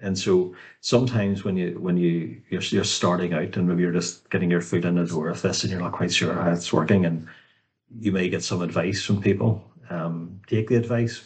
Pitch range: 85-110 Hz